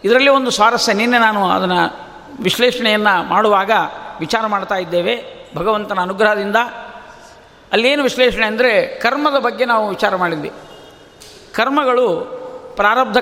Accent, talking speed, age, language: native, 105 wpm, 50-69, Kannada